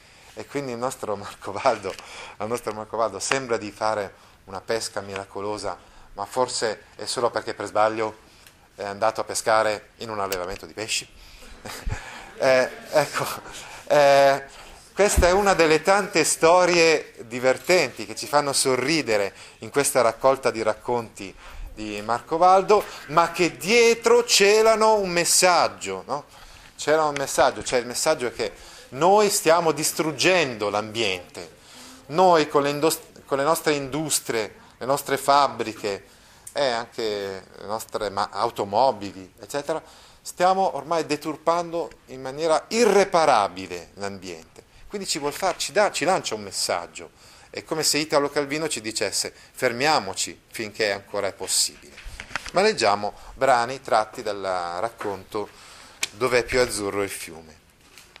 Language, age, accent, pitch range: Italian, 30-49, native, 105-165 Hz